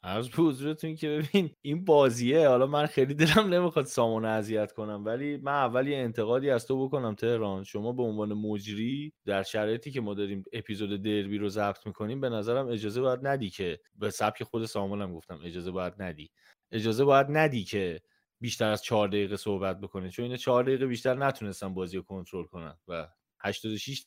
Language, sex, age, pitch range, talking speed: Persian, male, 30-49, 105-145 Hz, 175 wpm